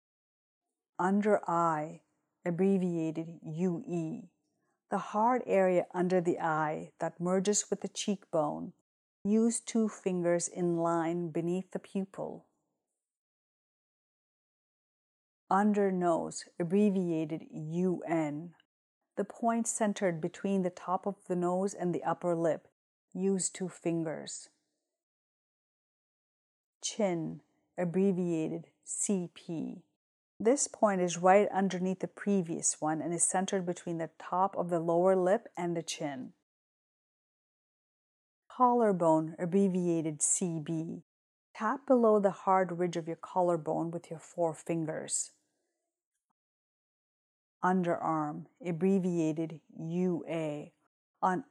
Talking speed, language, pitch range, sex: 100 wpm, English, 165-195 Hz, female